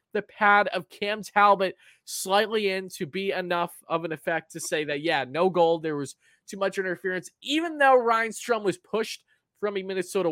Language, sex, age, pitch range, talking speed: English, male, 20-39, 145-190 Hz, 190 wpm